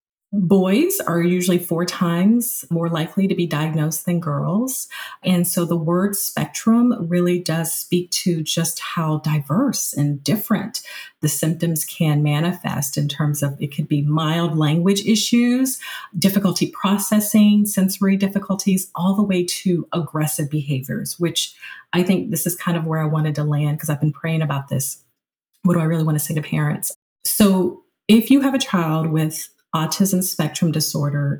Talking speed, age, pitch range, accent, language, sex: 165 wpm, 40-59, 155-195 Hz, American, English, female